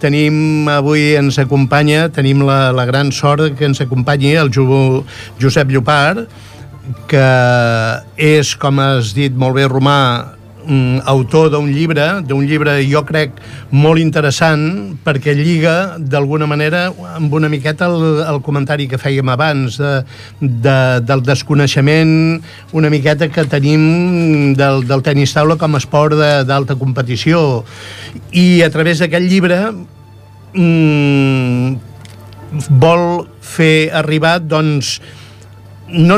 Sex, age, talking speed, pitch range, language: male, 60-79, 125 wpm, 130-155 Hz, Italian